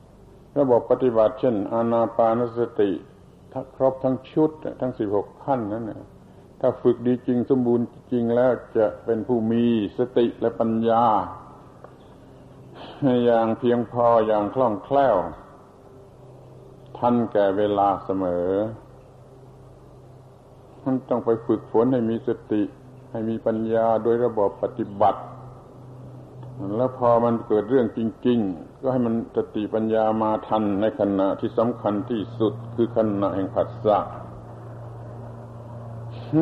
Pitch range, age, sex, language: 110-125 Hz, 60-79, male, Thai